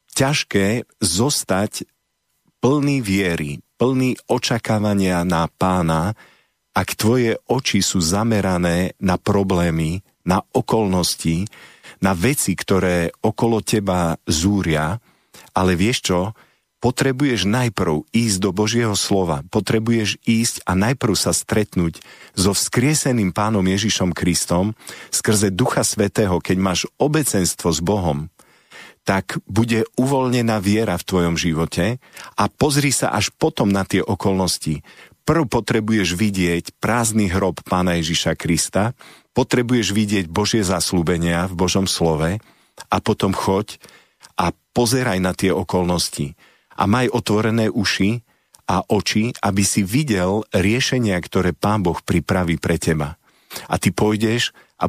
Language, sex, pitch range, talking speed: Slovak, male, 90-115 Hz, 120 wpm